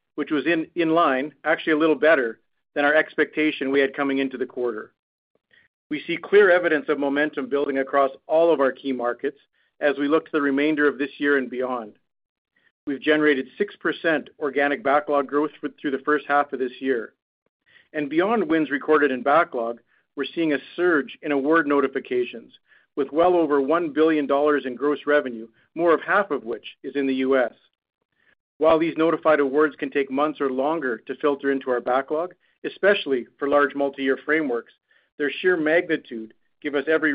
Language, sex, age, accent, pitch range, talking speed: English, male, 50-69, American, 135-155 Hz, 180 wpm